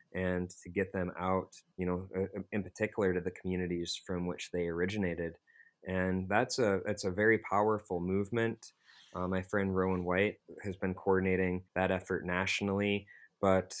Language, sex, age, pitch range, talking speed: English, male, 20-39, 90-100 Hz, 155 wpm